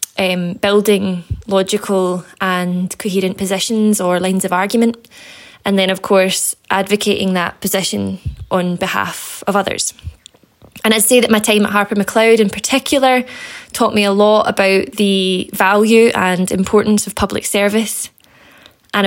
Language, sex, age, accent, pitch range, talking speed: English, female, 20-39, British, 185-215 Hz, 140 wpm